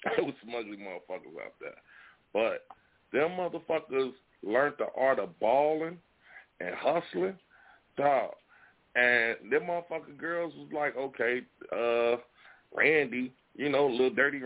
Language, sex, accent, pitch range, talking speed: English, male, American, 110-155 Hz, 130 wpm